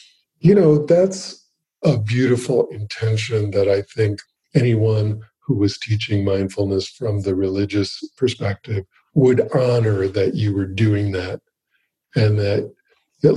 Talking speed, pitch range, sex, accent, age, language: 125 wpm, 105-140 Hz, male, American, 50-69, English